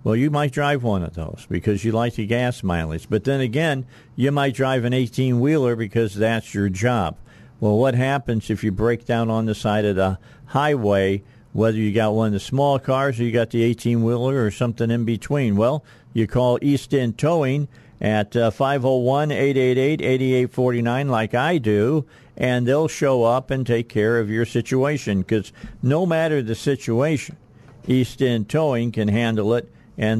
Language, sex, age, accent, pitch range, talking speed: English, male, 50-69, American, 110-130 Hz, 175 wpm